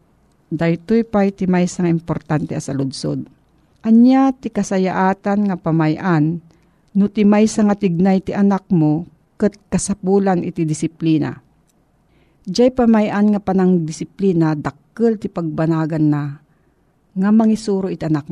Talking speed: 130 wpm